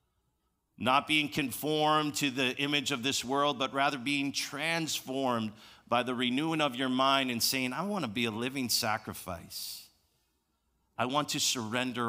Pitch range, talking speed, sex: 115-160 Hz, 160 wpm, male